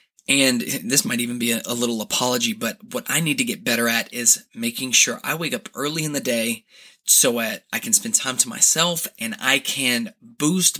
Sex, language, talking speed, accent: male, English, 220 wpm, American